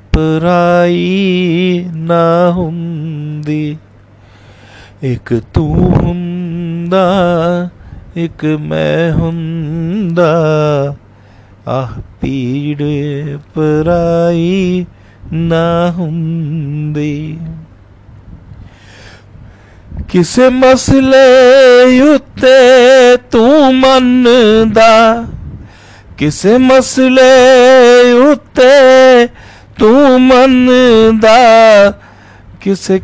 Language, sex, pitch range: Punjabi, male, 140-195 Hz